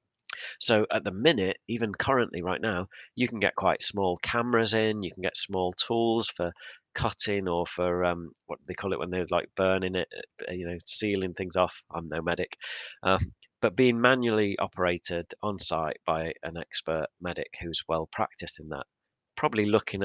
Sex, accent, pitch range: male, British, 90-110 Hz